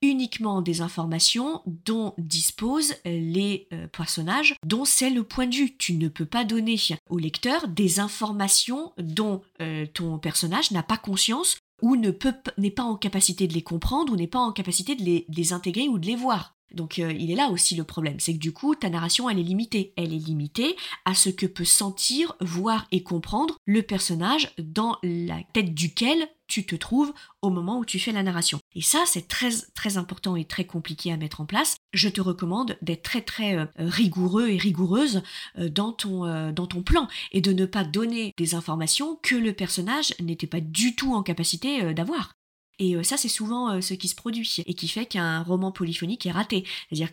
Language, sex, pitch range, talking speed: French, female, 170-230 Hz, 200 wpm